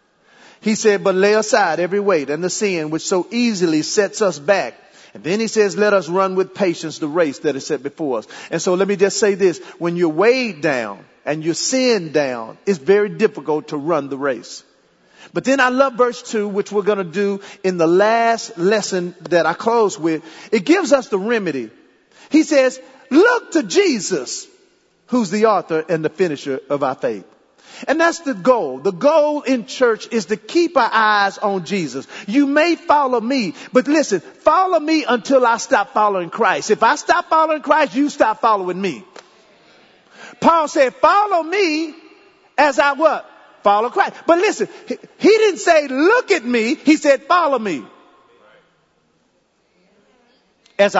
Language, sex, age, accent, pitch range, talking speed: English, male, 40-59, American, 195-285 Hz, 180 wpm